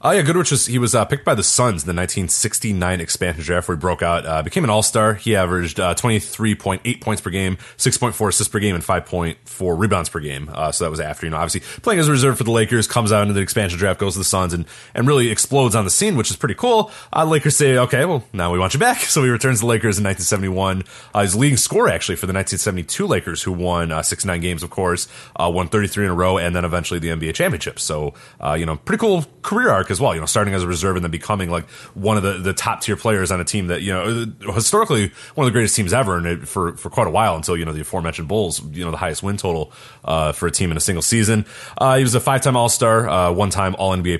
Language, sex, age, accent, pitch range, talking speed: English, male, 30-49, American, 90-125 Hz, 270 wpm